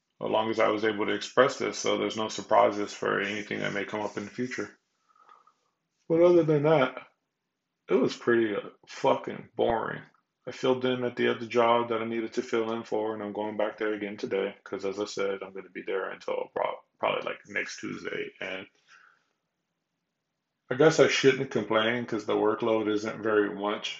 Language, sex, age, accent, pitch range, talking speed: English, male, 20-39, American, 105-120 Hz, 195 wpm